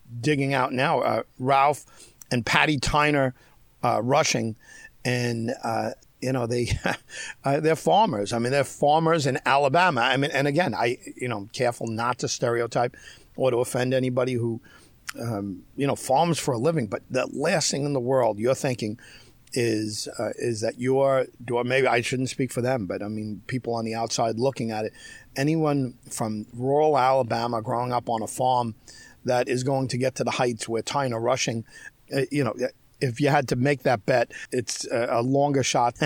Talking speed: 185 wpm